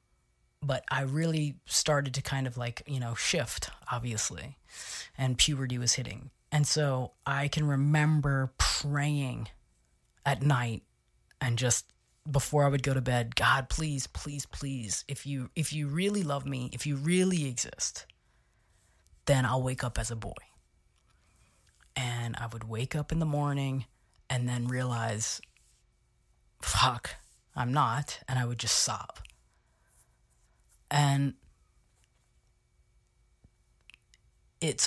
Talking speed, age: 130 wpm, 30-49